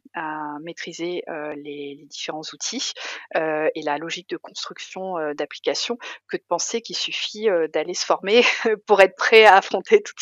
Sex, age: female, 30-49